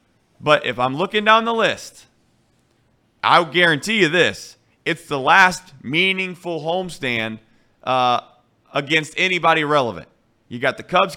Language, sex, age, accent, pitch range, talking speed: English, male, 30-49, American, 150-205 Hz, 125 wpm